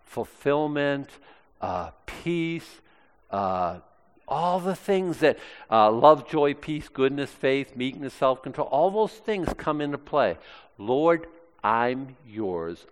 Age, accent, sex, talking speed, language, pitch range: 50-69, American, male, 115 wpm, English, 110-155 Hz